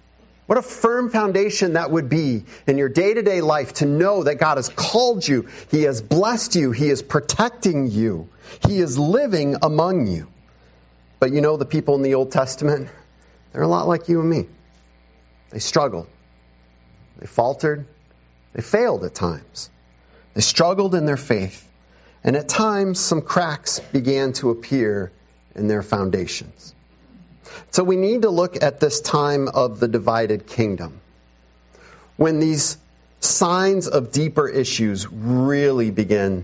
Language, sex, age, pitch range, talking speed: English, male, 40-59, 100-160 Hz, 150 wpm